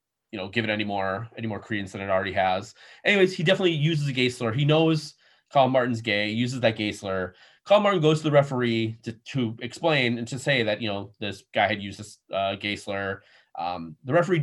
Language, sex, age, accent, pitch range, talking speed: English, male, 20-39, American, 105-150 Hz, 230 wpm